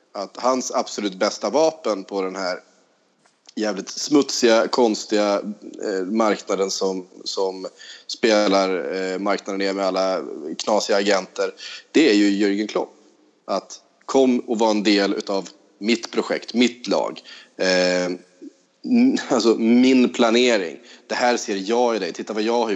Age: 30-49